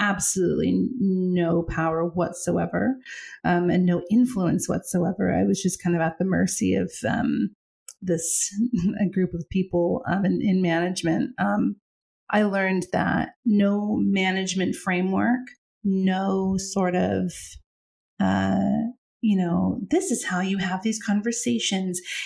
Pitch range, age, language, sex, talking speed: 180-225 Hz, 30-49, English, female, 130 wpm